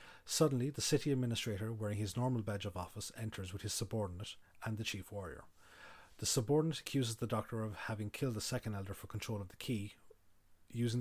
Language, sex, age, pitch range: English, male, 30-49, 100-120 Hz